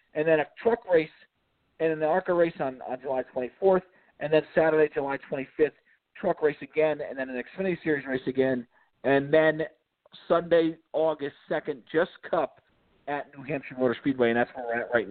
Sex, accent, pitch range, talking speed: male, American, 145-180 Hz, 190 wpm